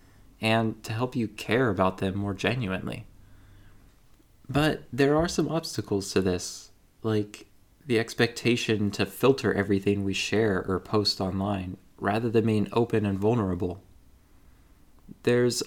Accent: American